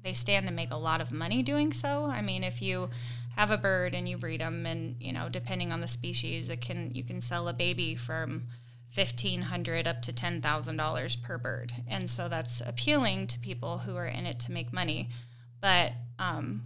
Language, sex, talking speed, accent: English, female, 205 wpm, American